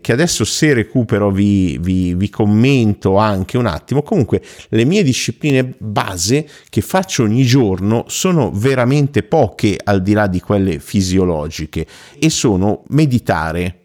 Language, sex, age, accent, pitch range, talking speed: Italian, male, 50-69, native, 90-115 Hz, 135 wpm